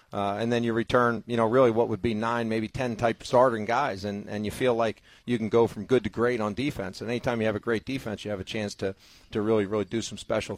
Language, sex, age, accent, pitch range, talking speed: English, male, 40-59, American, 105-120 Hz, 285 wpm